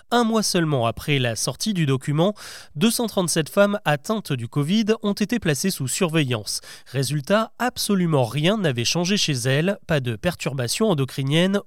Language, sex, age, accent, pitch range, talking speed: French, male, 30-49, French, 135-200 Hz, 150 wpm